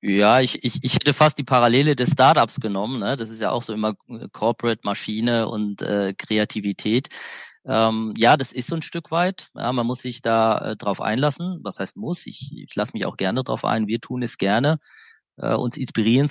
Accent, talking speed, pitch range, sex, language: German, 205 wpm, 110-130 Hz, male, German